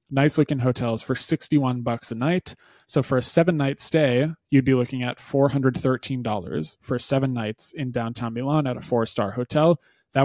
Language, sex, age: English, male, 20-39